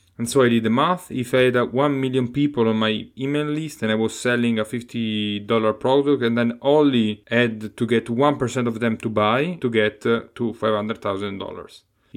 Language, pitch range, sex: English, 110-130 Hz, male